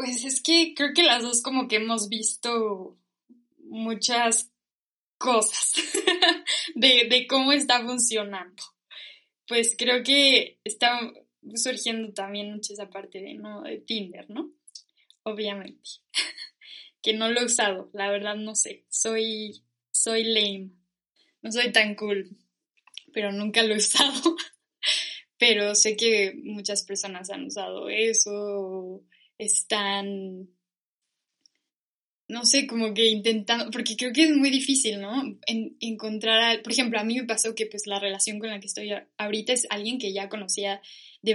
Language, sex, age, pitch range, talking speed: Spanish, female, 10-29, 200-240 Hz, 145 wpm